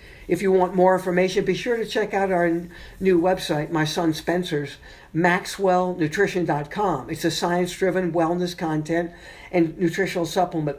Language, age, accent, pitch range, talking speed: English, 60-79, American, 155-185 Hz, 120 wpm